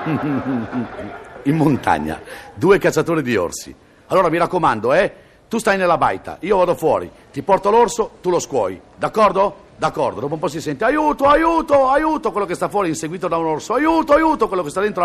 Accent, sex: native, male